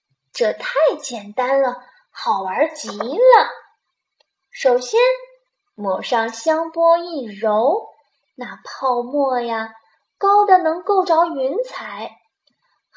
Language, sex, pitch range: Chinese, female, 235-335 Hz